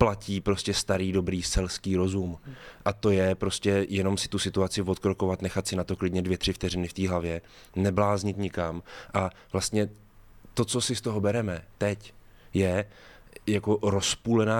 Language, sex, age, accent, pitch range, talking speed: Czech, male, 20-39, native, 95-110 Hz, 165 wpm